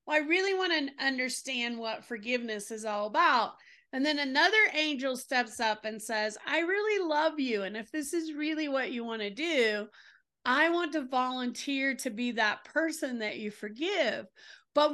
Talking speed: 180 wpm